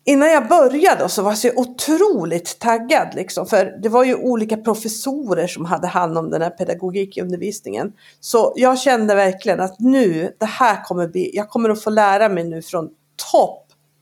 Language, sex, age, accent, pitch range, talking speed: Swedish, female, 50-69, native, 185-295 Hz, 175 wpm